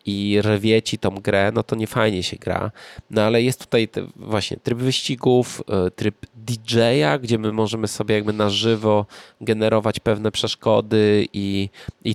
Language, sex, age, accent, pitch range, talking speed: Polish, male, 20-39, native, 100-120 Hz, 160 wpm